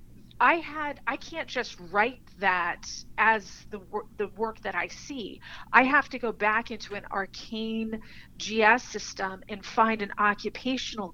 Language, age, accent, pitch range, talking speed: English, 40-59, American, 200-240 Hz, 150 wpm